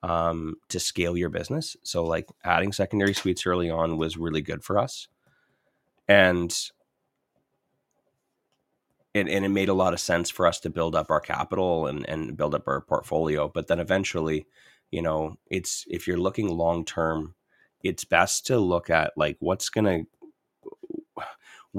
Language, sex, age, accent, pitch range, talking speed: English, male, 30-49, American, 80-95 Hz, 160 wpm